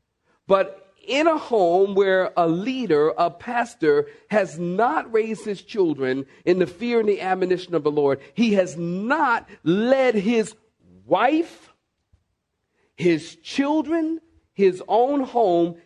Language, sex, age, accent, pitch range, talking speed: English, male, 50-69, American, 130-205 Hz, 130 wpm